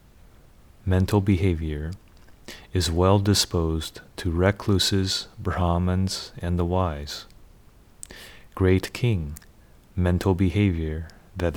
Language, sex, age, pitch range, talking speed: English, male, 30-49, 85-100 Hz, 85 wpm